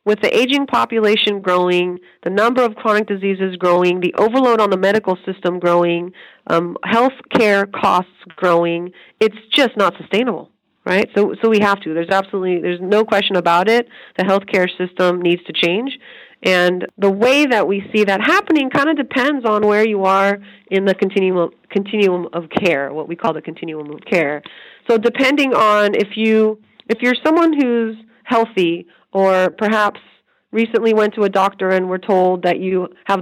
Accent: American